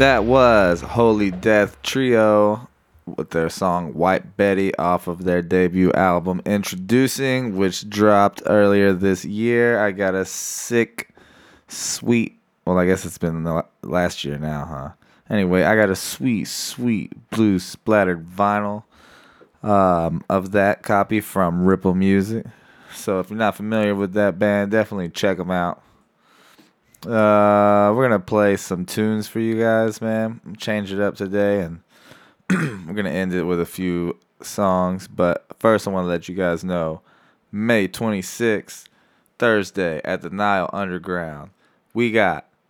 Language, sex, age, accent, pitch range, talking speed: English, male, 20-39, American, 90-110 Hz, 150 wpm